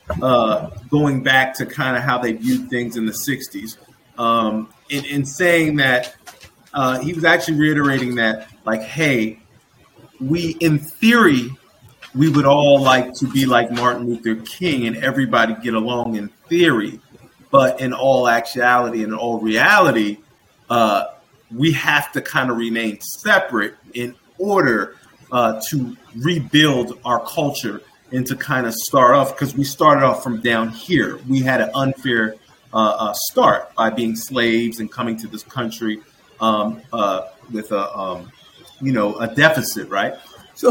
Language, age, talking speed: English, 30-49, 150 wpm